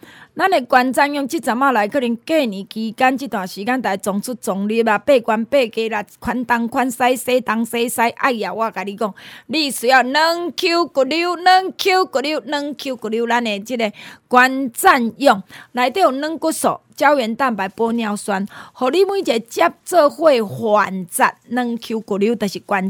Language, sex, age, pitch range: Chinese, female, 20-39, 215-290 Hz